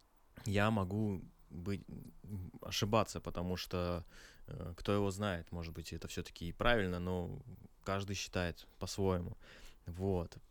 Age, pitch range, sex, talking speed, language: 20-39, 90-100 Hz, male, 115 wpm, Russian